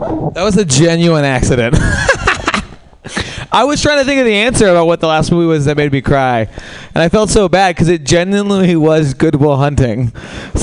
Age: 20-39